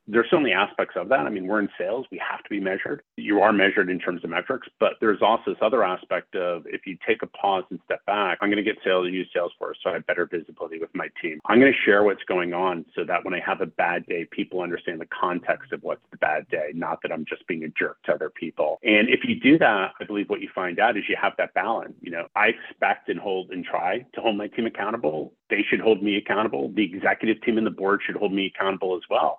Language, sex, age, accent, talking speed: English, male, 30-49, American, 275 wpm